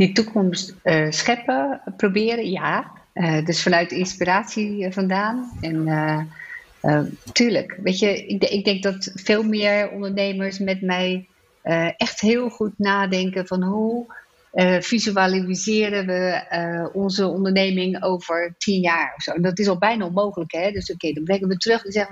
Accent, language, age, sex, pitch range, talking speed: Dutch, English, 50-69, female, 185-215 Hz, 165 wpm